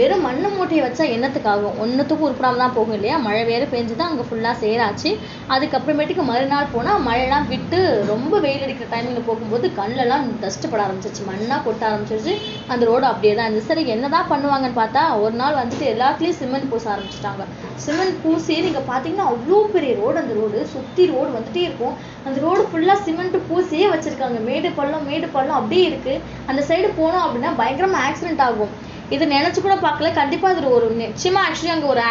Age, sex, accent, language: 20-39, female, native, Tamil